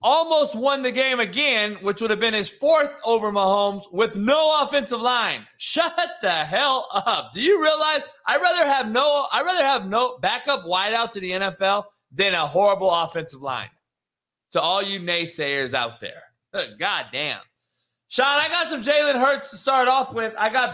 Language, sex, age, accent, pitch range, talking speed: English, male, 30-49, American, 160-240 Hz, 170 wpm